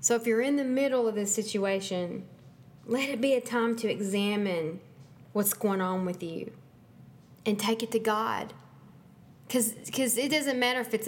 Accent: American